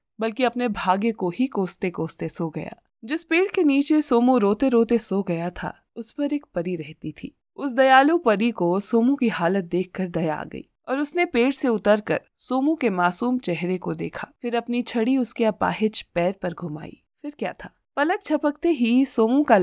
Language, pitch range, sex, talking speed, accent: Hindi, 185-255 Hz, female, 195 wpm, native